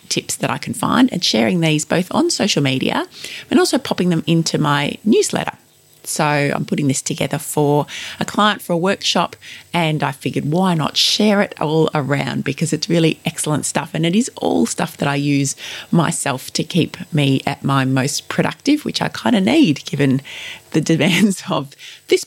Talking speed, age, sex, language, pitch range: 190 wpm, 30-49, female, English, 150-200 Hz